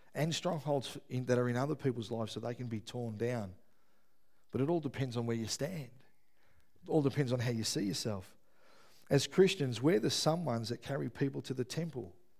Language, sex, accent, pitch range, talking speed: English, male, Australian, 115-160 Hz, 205 wpm